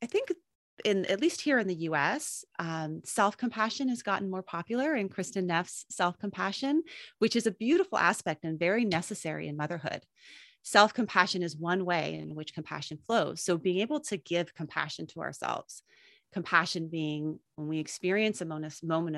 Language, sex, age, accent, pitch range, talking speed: English, female, 30-49, American, 160-215 Hz, 165 wpm